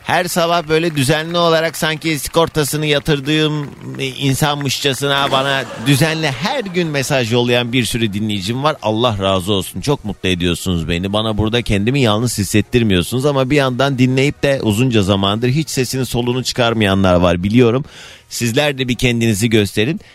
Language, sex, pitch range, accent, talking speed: Turkish, male, 100-140 Hz, native, 145 wpm